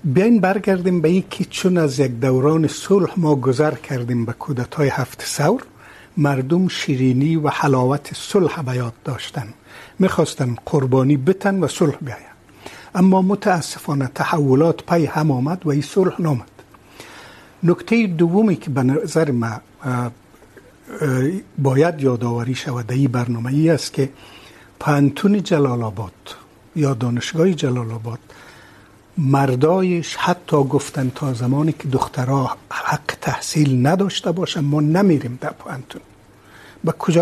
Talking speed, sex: 125 wpm, male